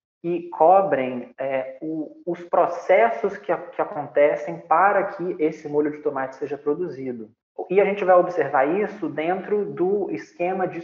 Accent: Brazilian